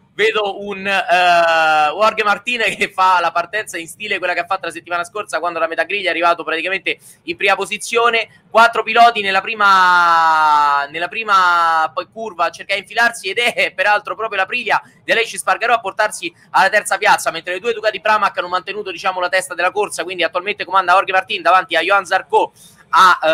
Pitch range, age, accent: 180-215 Hz, 20-39, native